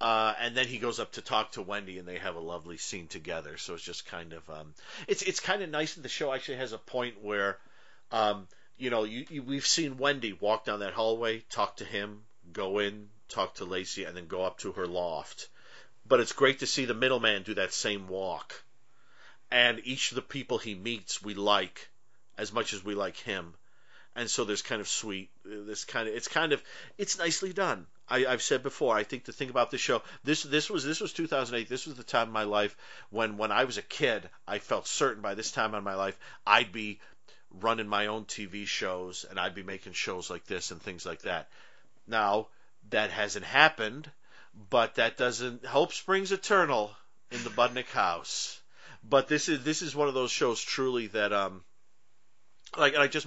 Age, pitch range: 40-59, 105-135 Hz